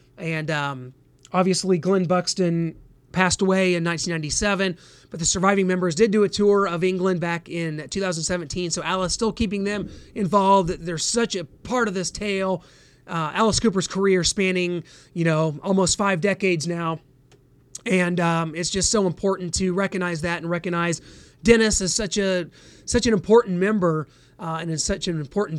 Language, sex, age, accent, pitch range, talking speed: English, male, 30-49, American, 175-210 Hz, 165 wpm